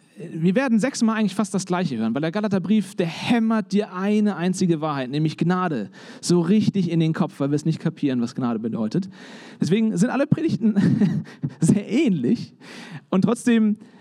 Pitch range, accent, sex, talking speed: 175-220 Hz, German, male, 170 wpm